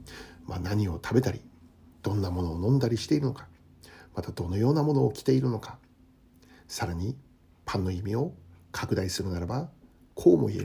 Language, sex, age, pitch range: Japanese, male, 60-79, 95-135 Hz